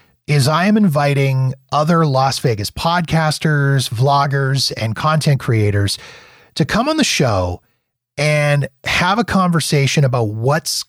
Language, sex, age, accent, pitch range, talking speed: English, male, 30-49, American, 120-155 Hz, 125 wpm